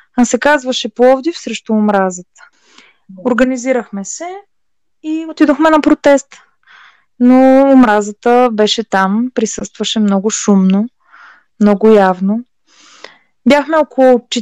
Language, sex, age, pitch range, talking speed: Bulgarian, female, 20-39, 210-265 Hz, 95 wpm